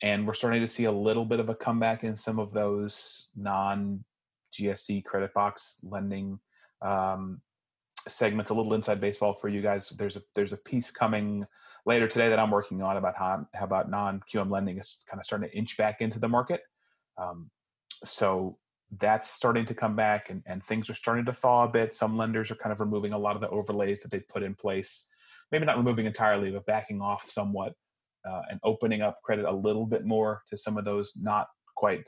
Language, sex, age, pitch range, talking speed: English, male, 30-49, 100-115 Hz, 210 wpm